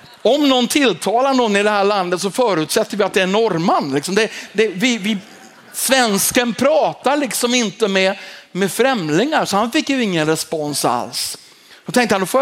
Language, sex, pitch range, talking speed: Swedish, male, 170-225 Hz, 180 wpm